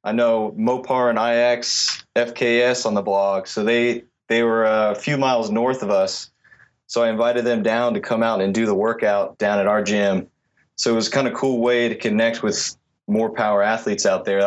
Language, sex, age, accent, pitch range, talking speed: English, male, 20-39, American, 105-120 Hz, 205 wpm